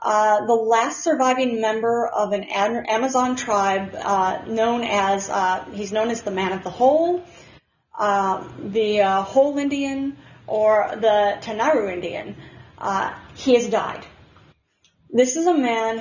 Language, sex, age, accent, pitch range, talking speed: English, female, 30-49, American, 200-235 Hz, 140 wpm